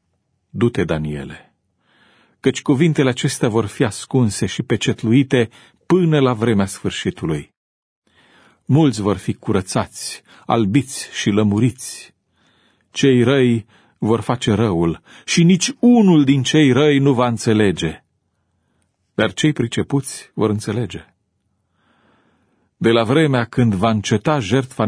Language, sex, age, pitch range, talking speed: Romanian, male, 40-59, 105-140 Hz, 115 wpm